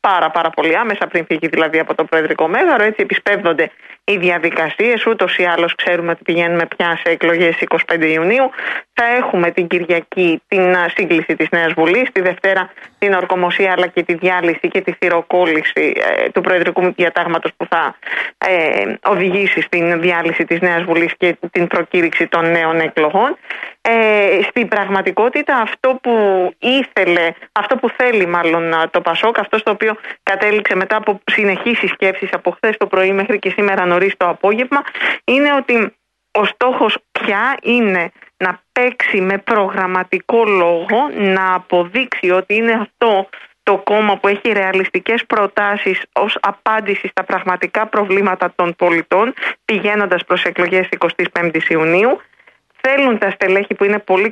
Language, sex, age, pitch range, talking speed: Greek, female, 20-39, 175-210 Hz, 145 wpm